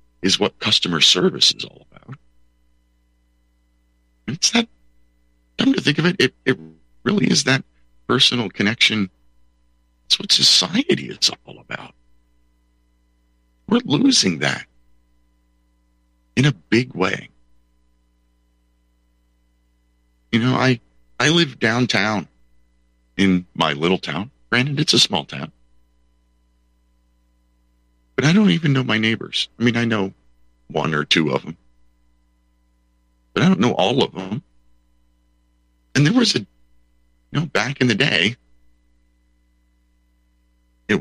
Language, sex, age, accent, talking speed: English, male, 50-69, American, 120 wpm